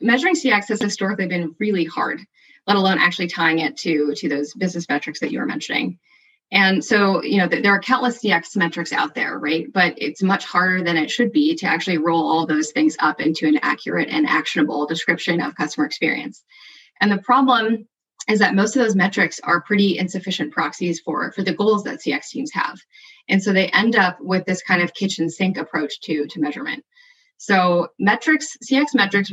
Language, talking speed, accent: English, 200 wpm, American